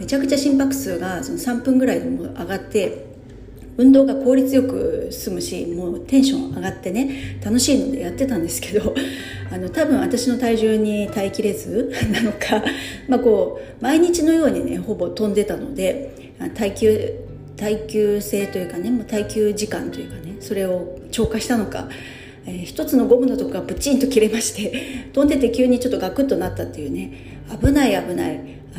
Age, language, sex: 40-59, Japanese, female